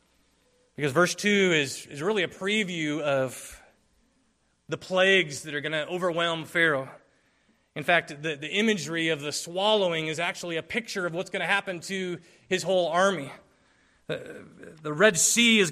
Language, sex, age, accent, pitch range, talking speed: English, male, 30-49, American, 155-195 Hz, 165 wpm